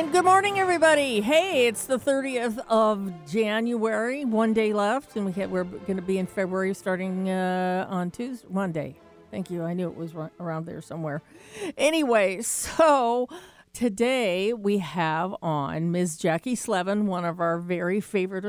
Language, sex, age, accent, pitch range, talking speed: English, female, 50-69, American, 180-230 Hz, 160 wpm